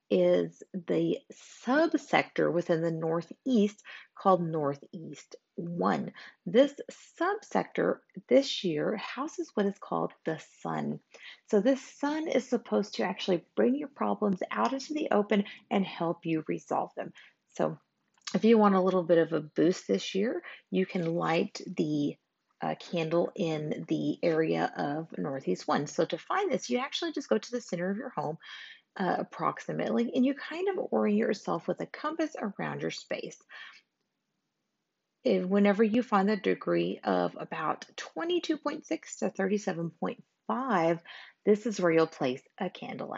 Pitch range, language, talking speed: 170-250 Hz, English, 150 wpm